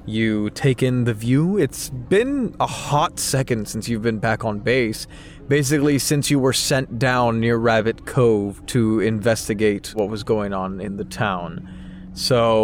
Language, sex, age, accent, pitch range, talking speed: English, male, 20-39, American, 110-135 Hz, 165 wpm